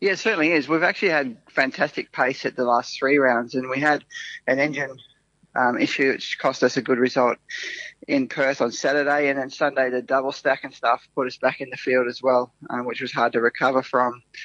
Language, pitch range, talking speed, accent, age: English, 130-150 Hz, 225 wpm, Australian, 20-39